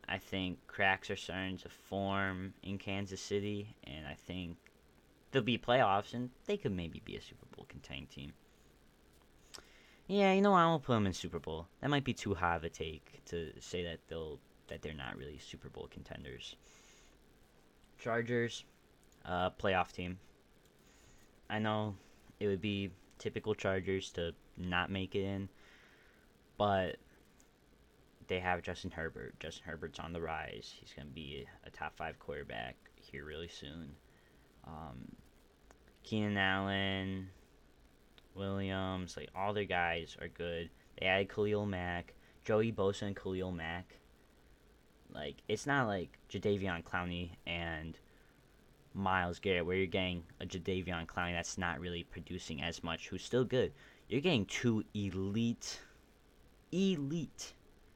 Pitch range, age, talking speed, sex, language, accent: 85-100 Hz, 10-29, 150 wpm, male, English, American